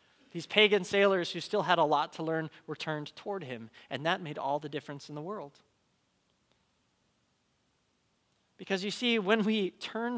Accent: American